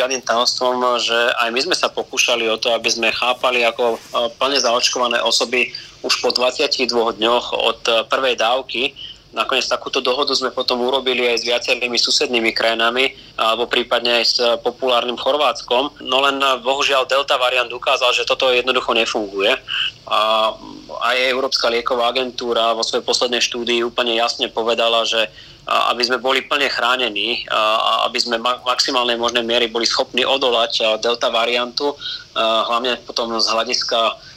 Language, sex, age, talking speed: Slovak, male, 20-39, 145 wpm